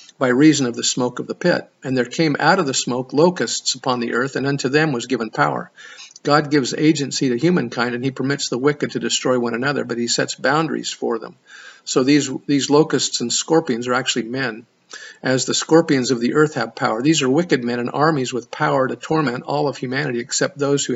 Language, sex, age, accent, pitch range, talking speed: English, male, 50-69, American, 125-145 Hz, 225 wpm